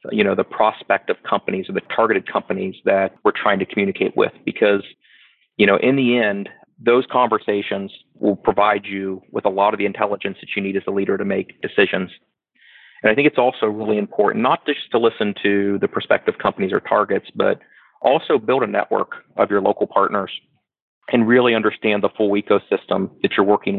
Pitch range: 100-115 Hz